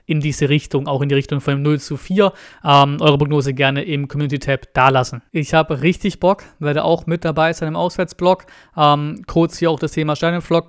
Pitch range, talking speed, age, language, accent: 140-165 Hz, 210 wpm, 20-39, German, German